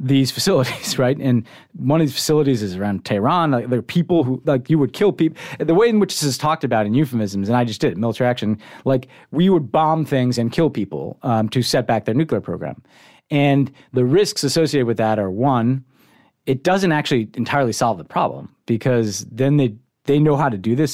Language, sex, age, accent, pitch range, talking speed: English, male, 30-49, American, 110-145 Hz, 215 wpm